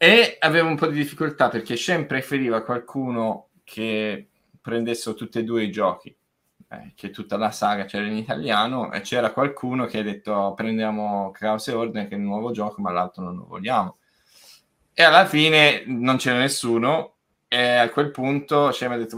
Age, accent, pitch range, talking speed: 20-39, native, 110-140 Hz, 185 wpm